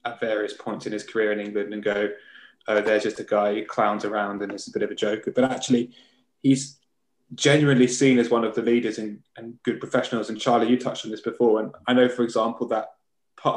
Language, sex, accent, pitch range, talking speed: English, male, British, 105-125 Hz, 235 wpm